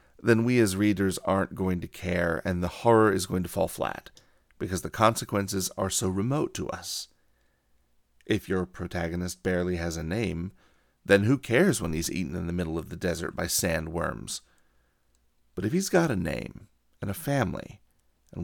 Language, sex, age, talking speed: English, male, 40-59, 180 wpm